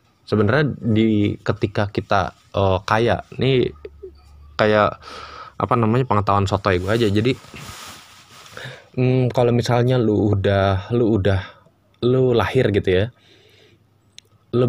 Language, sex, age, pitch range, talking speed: Indonesian, male, 20-39, 95-115 Hz, 110 wpm